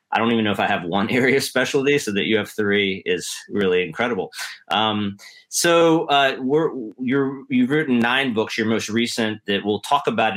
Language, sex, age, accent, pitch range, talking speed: English, male, 30-49, American, 95-120 Hz, 190 wpm